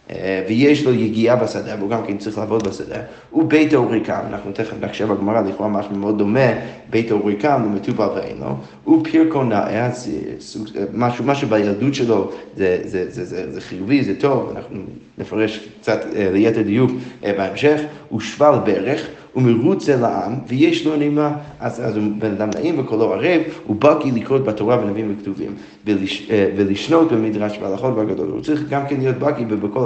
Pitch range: 105-140 Hz